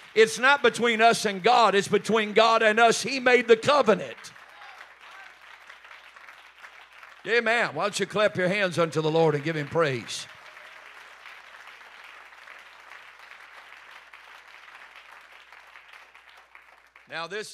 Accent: American